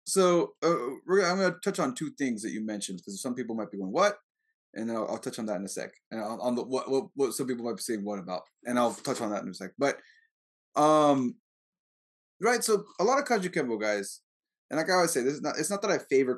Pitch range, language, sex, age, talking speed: 115-170 Hz, English, male, 20-39, 270 wpm